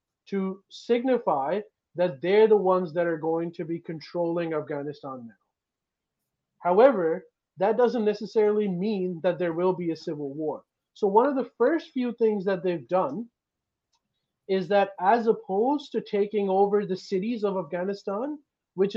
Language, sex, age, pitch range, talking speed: English, male, 30-49, 175-210 Hz, 150 wpm